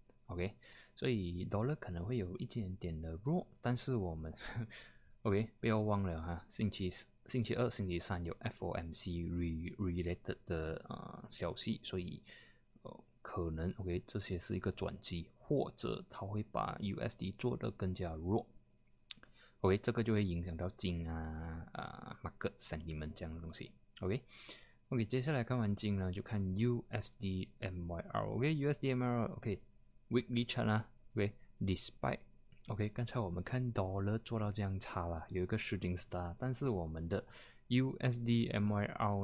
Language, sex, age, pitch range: Chinese, male, 20-39, 90-115 Hz